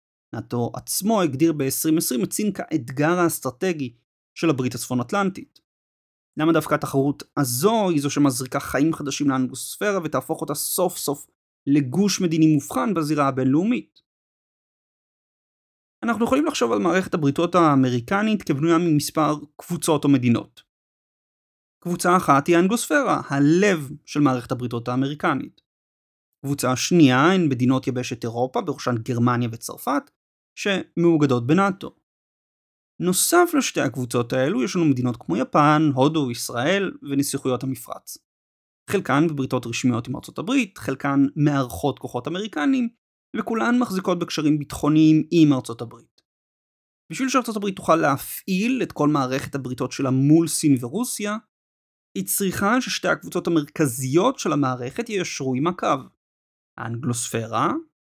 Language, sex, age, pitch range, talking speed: Hebrew, male, 30-49, 130-180 Hz, 120 wpm